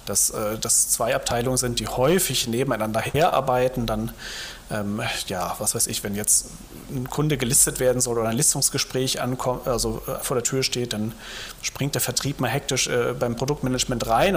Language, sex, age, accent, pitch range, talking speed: German, male, 30-49, German, 115-135 Hz, 175 wpm